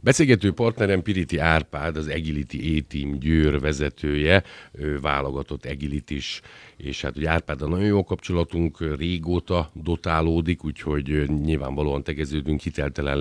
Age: 50-69